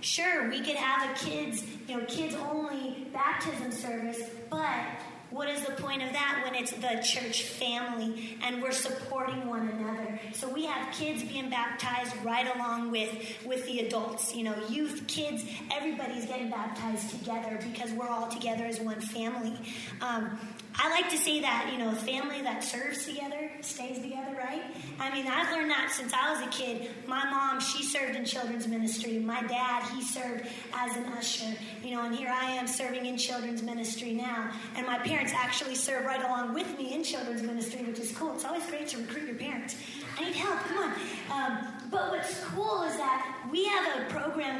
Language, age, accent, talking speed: English, 20-39, American, 190 wpm